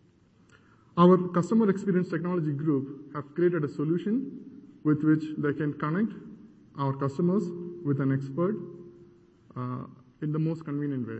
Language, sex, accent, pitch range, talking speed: English, male, Indian, 145-180 Hz, 135 wpm